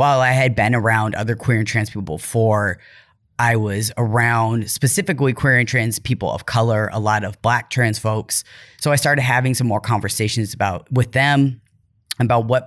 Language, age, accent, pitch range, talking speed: English, 30-49, American, 110-125 Hz, 185 wpm